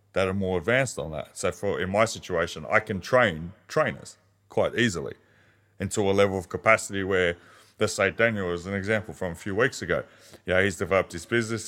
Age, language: 20-39, English